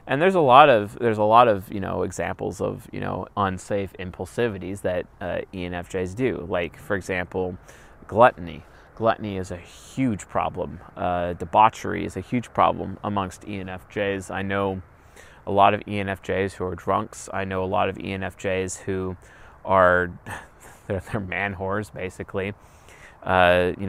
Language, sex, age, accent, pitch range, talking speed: English, male, 30-49, American, 90-105 Hz, 155 wpm